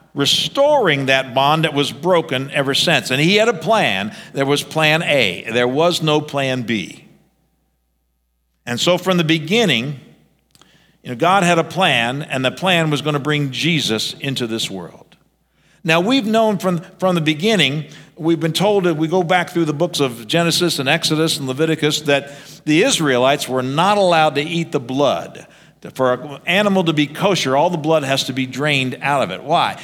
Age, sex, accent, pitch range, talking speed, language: 50-69, male, American, 135-175 Hz, 190 wpm, English